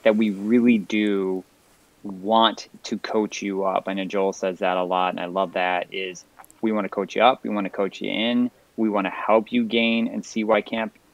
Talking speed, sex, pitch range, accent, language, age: 230 wpm, male, 95-110 Hz, American, English, 30-49